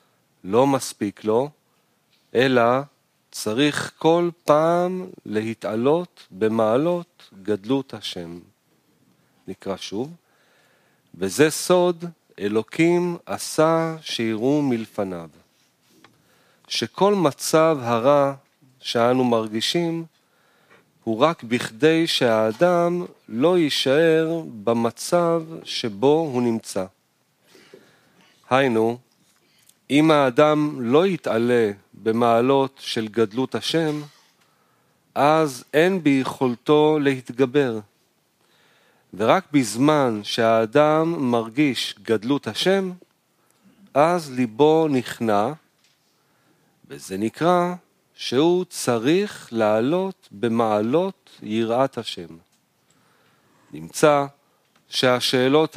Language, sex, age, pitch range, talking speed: Hebrew, male, 40-59, 115-160 Hz, 70 wpm